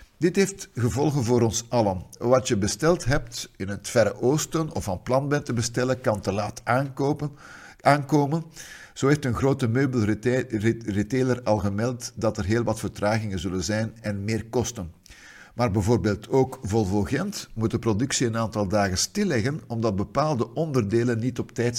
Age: 50-69